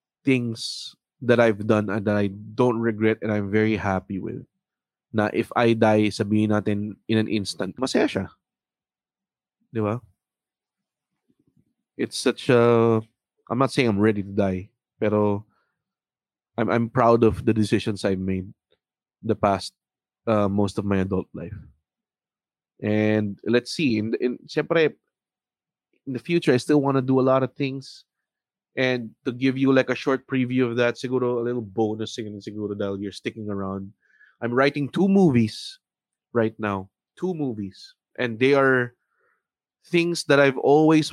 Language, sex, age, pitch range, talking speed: English, male, 20-39, 105-130 Hz, 150 wpm